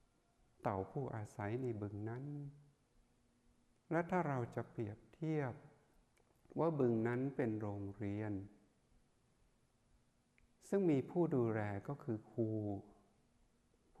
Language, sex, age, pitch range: Thai, male, 60-79, 110-145 Hz